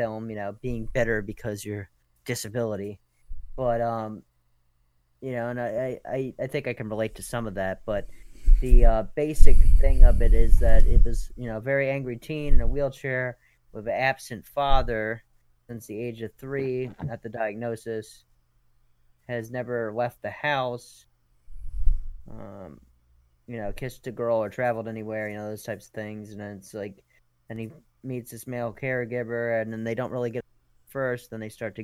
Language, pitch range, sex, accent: English, 90-115 Hz, male, American